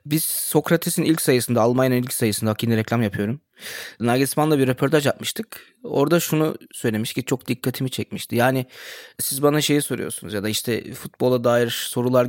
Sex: male